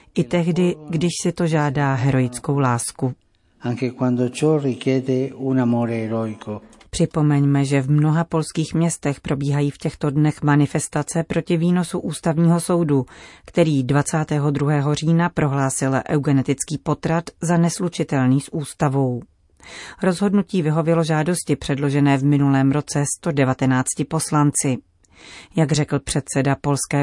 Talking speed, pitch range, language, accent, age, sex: 100 wpm, 135-160 Hz, Czech, native, 40-59, female